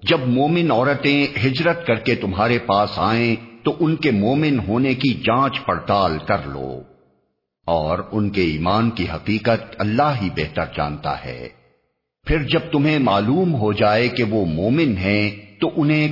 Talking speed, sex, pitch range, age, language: 155 wpm, male, 90-120 Hz, 50-69, Urdu